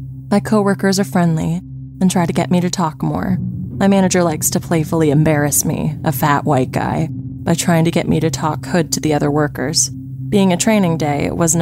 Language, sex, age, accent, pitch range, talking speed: English, female, 20-39, American, 135-180 Hz, 210 wpm